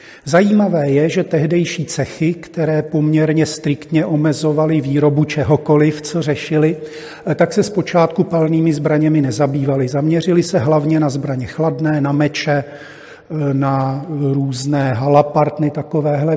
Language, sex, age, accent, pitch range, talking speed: Czech, male, 40-59, native, 145-155 Hz, 115 wpm